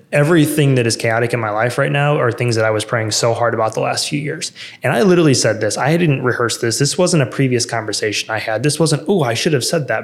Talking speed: 275 wpm